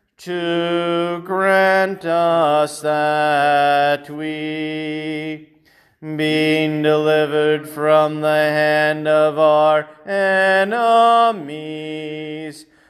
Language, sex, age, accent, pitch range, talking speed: English, male, 40-59, American, 150-175 Hz, 60 wpm